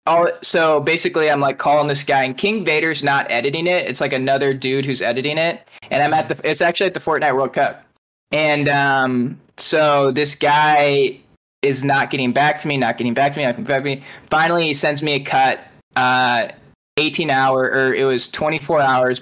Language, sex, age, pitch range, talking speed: English, male, 10-29, 130-150 Hz, 195 wpm